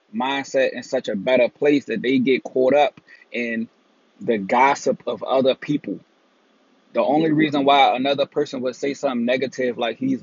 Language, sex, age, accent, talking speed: English, male, 20-39, American, 170 wpm